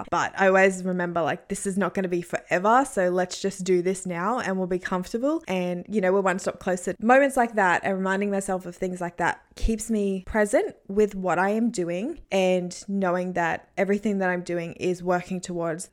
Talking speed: 215 wpm